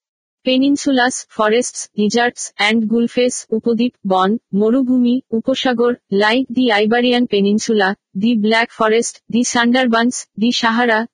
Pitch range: 210-245 Hz